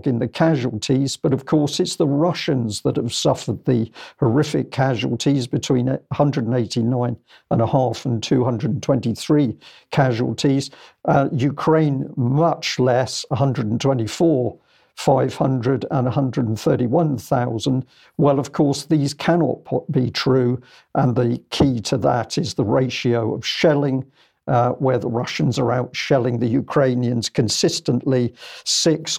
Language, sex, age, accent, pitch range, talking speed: English, male, 50-69, British, 125-145 Hz, 120 wpm